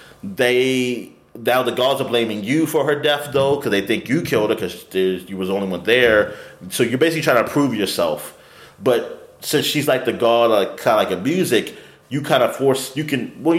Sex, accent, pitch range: male, American, 95-150 Hz